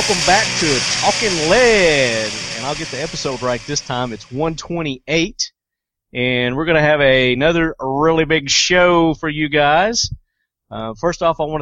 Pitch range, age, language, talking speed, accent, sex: 120-160 Hz, 30-49, English, 170 wpm, American, male